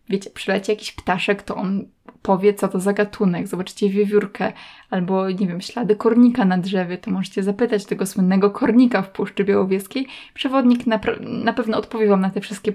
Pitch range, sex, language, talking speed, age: 195-220 Hz, female, Polish, 185 wpm, 20-39